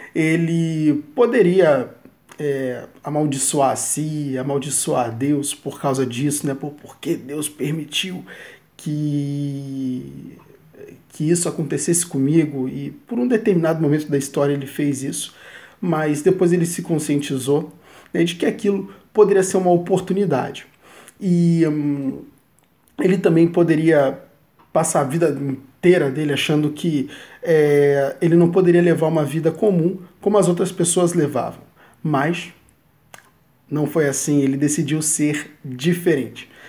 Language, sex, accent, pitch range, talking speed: Portuguese, male, Brazilian, 145-175 Hz, 125 wpm